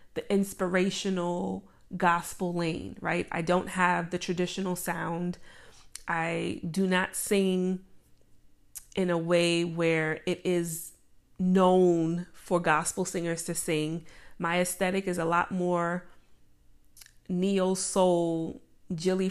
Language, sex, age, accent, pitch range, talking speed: English, female, 30-49, American, 165-190 Hz, 110 wpm